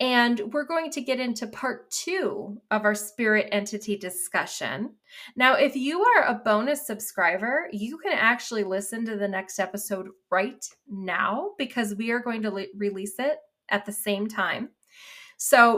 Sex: female